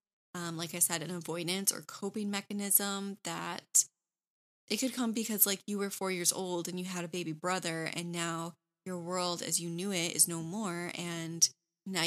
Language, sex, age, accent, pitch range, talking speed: English, female, 20-39, American, 170-195 Hz, 195 wpm